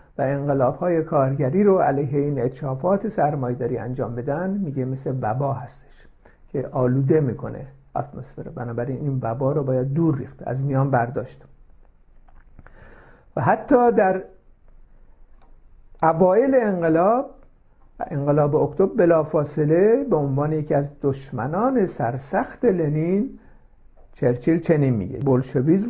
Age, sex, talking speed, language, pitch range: 60-79, male, 115 wpm, Persian, 130-170 Hz